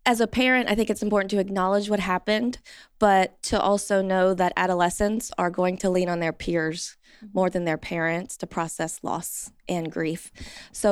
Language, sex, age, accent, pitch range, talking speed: English, female, 20-39, American, 170-210 Hz, 185 wpm